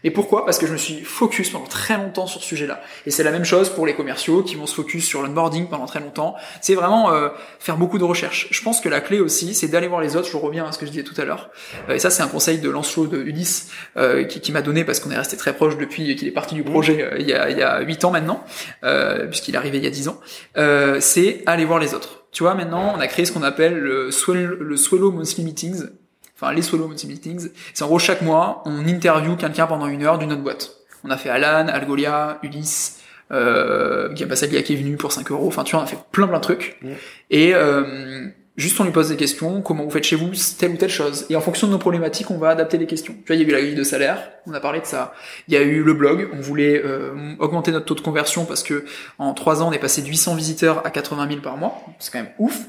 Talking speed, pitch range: 280 wpm, 150-175 Hz